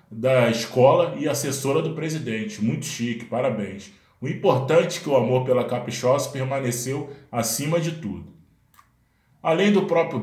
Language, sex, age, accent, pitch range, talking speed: Portuguese, male, 20-39, Brazilian, 125-160 Hz, 140 wpm